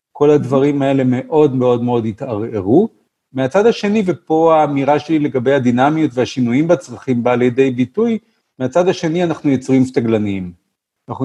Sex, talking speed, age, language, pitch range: male, 135 wpm, 50-69, Hebrew, 125-170 Hz